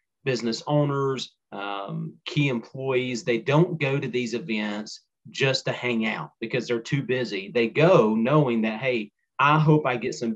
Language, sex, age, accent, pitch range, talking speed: English, male, 30-49, American, 115-135 Hz, 170 wpm